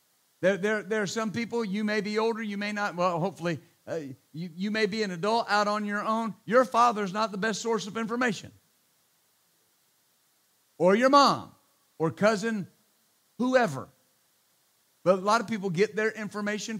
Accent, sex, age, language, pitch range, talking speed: American, male, 50-69, English, 175-230 Hz, 170 wpm